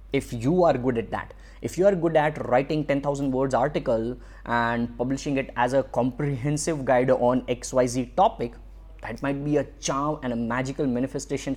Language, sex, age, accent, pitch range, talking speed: English, male, 20-39, Indian, 125-155 Hz, 175 wpm